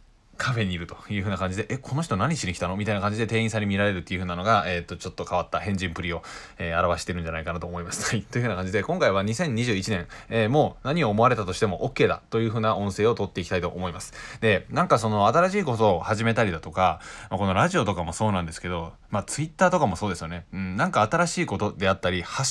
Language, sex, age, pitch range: Japanese, male, 20-39, 90-120 Hz